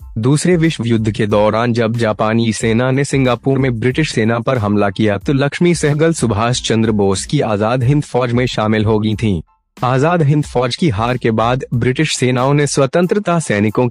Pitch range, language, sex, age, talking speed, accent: 110-135 Hz, Hindi, male, 20-39, 180 wpm, native